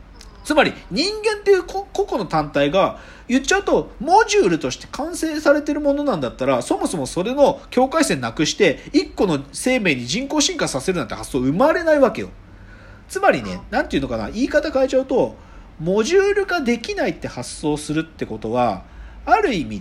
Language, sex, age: Japanese, male, 40-59